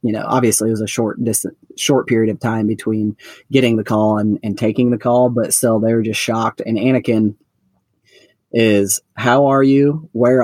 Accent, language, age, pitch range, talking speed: American, English, 30-49, 110-125 Hz, 195 wpm